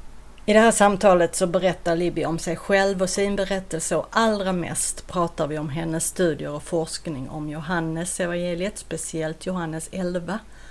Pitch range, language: 165-205 Hz, Swedish